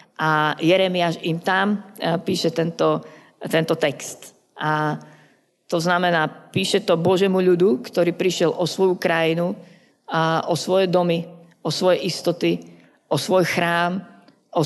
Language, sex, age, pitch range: Slovak, female, 50-69, 165-190 Hz